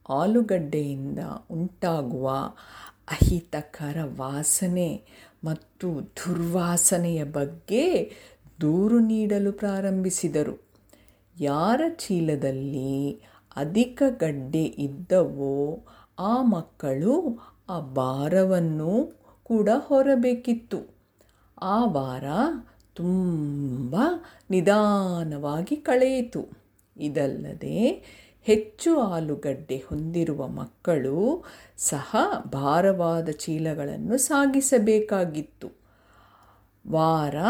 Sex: female